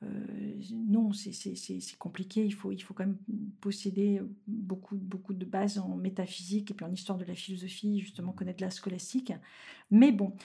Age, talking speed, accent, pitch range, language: 50-69, 185 wpm, French, 190-220 Hz, French